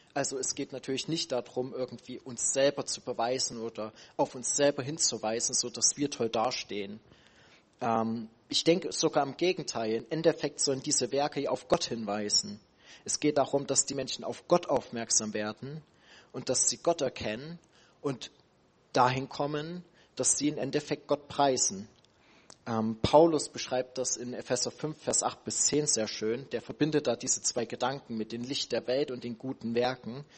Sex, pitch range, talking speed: male, 115-145 Hz, 170 wpm